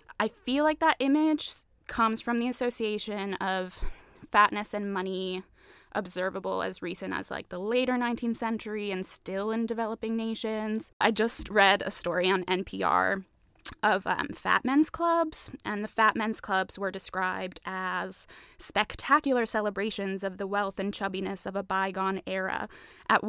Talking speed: 150 wpm